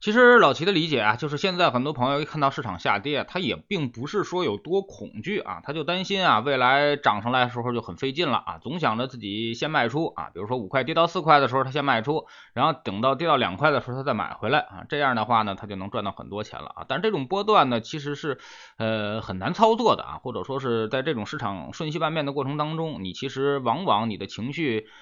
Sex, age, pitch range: male, 20-39, 110-150 Hz